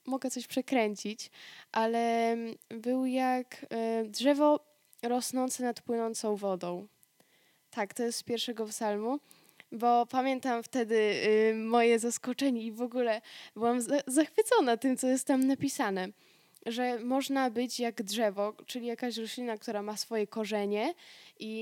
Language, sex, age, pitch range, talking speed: Polish, female, 10-29, 230-275 Hz, 125 wpm